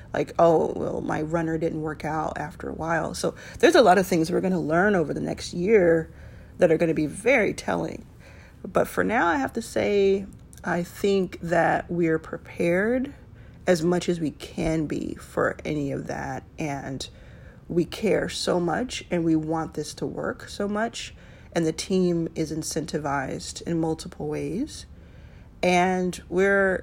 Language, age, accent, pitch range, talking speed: English, 40-59, American, 155-180 Hz, 170 wpm